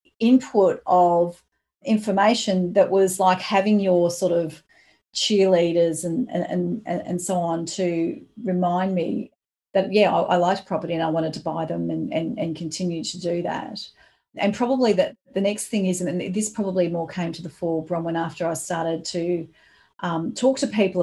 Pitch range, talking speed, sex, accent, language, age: 175-210 Hz, 180 wpm, female, Australian, English, 40-59